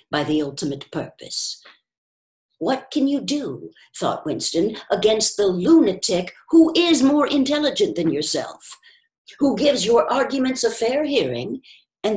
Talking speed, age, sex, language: 135 wpm, 60-79, female, English